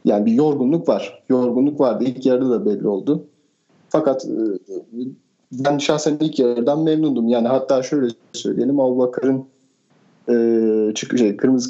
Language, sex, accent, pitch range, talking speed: Turkish, male, native, 120-160 Hz, 135 wpm